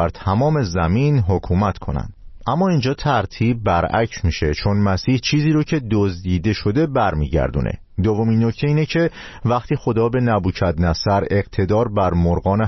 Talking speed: 140 wpm